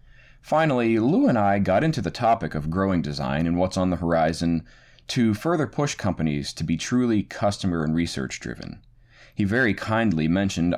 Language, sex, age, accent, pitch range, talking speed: English, male, 20-39, American, 80-115 Hz, 175 wpm